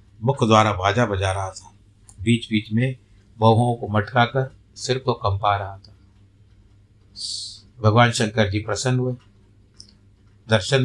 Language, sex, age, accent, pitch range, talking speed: Hindi, male, 60-79, native, 100-125 Hz, 135 wpm